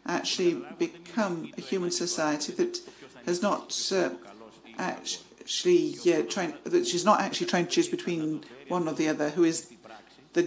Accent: British